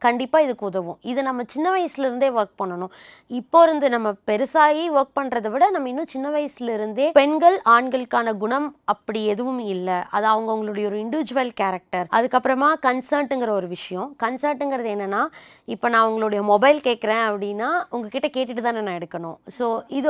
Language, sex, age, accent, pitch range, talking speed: Tamil, female, 20-39, native, 205-275 Hz, 150 wpm